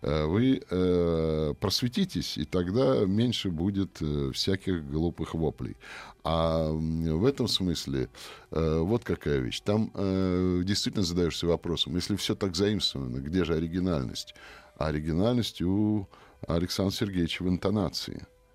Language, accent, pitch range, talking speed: Russian, native, 75-95 Hz, 110 wpm